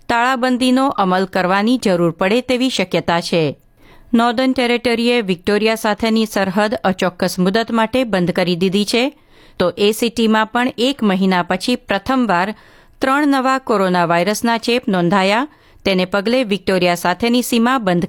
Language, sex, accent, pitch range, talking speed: Gujarati, female, native, 185-245 Hz, 130 wpm